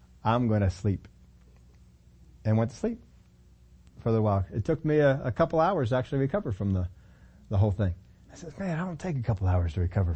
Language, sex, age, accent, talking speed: English, male, 40-59, American, 220 wpm